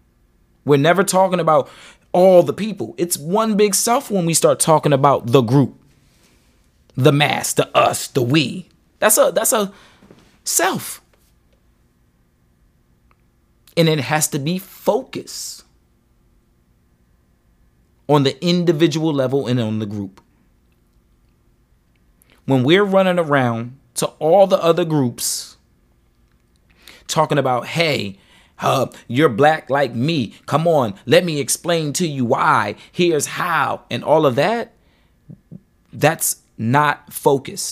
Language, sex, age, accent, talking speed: English, male, 30-49, American, 120 wpm